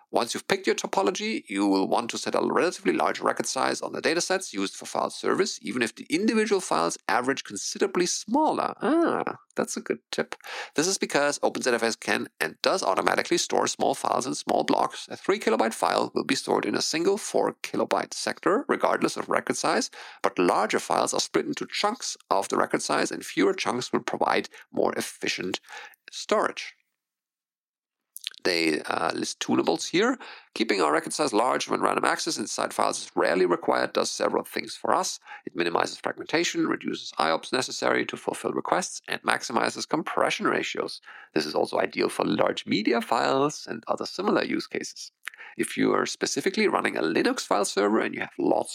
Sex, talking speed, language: male, 180 wpm, English